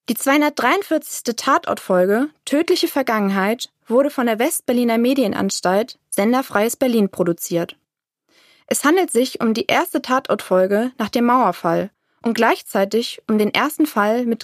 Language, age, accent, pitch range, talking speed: German, 20-39, German, 210-275 Hz, 125 wpm